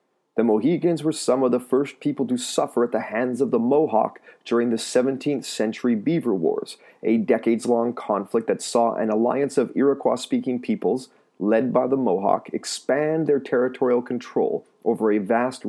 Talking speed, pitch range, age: 165 wpm, 115-140 Hz, 30-49